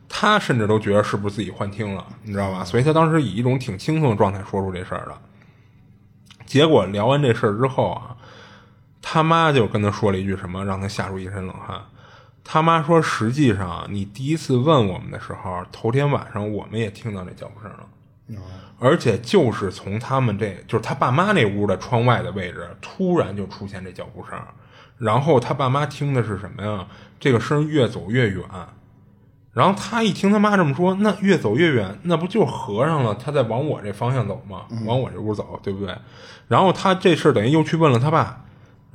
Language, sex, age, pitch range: Chinese, male, 20-39, 100-140 Hz